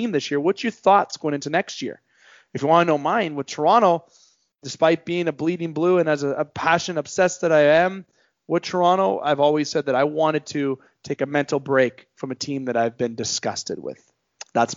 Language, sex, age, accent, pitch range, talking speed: English, male, 30-49, American, 135-185 Hz, 210 wpm